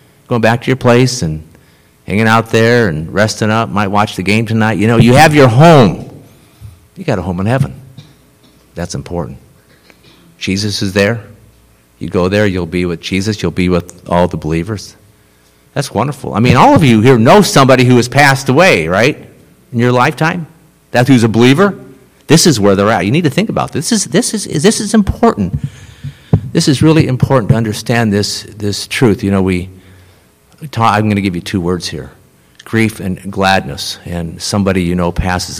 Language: English